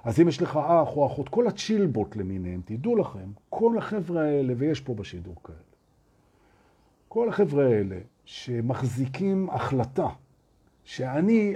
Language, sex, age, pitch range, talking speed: Hebrew, male, 50-69, 120-175 Hz, 125 wpm